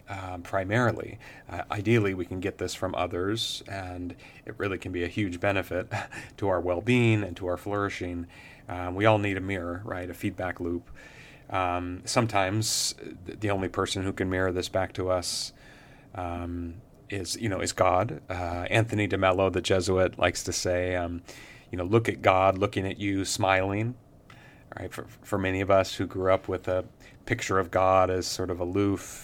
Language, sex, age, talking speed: English, male, 30-49, 180 wpm